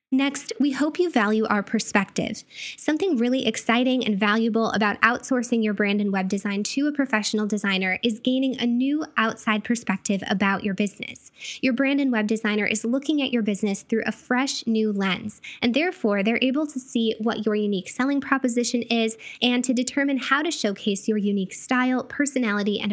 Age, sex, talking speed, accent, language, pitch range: 10-29, female, 185 wpm, American, English, 210-255 Hz